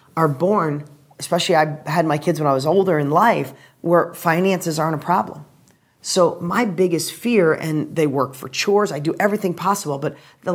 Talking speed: 190 wpm